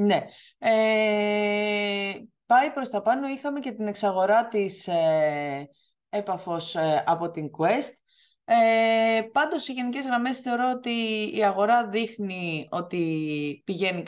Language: Greek